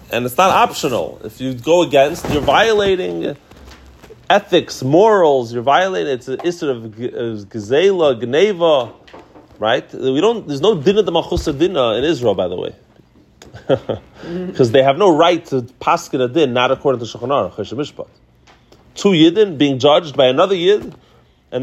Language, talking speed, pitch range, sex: English, 155 wpm, 120-170 Hz, male